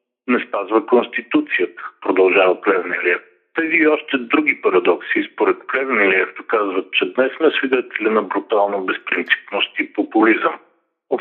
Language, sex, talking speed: Bulgarian, male, 125 wpm